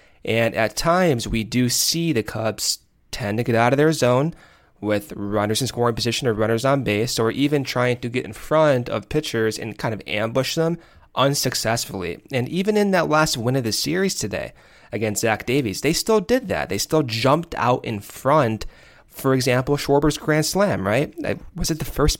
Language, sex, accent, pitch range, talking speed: English, male, American, 115-155 Hz, 195 wpm